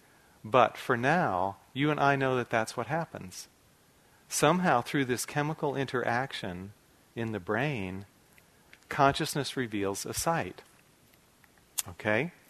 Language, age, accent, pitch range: English, 40-59, American, 105-140 Hz